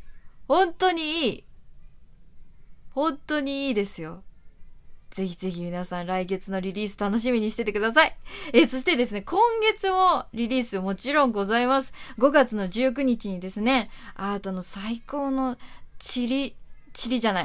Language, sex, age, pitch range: Japanese, female, 20-39, 195-270 Hz